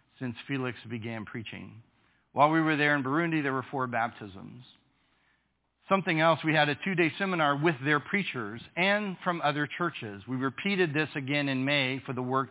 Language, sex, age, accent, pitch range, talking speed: English, male, 40-59, American, 120-150 Hz, 175 wpm